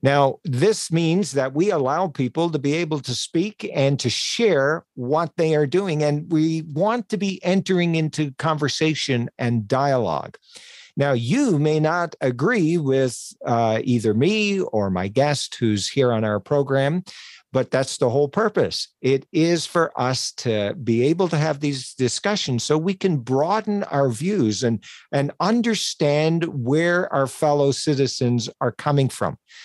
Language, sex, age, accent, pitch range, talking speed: English, male, 50-69, American, 120-160 Hz, 160 wpm